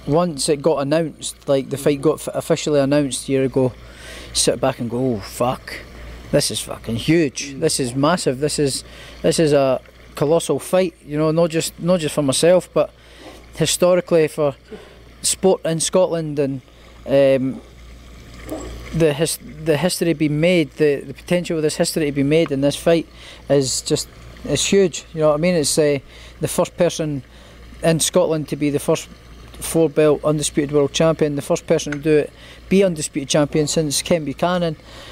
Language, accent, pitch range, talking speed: English, British, 135-160 Hz, 180 wpm